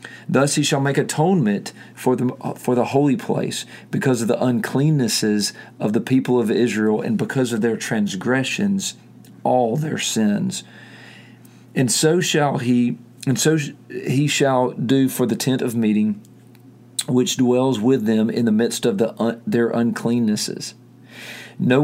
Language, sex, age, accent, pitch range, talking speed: English, male, 40-59, American, 115-135 Hz, 150 wpm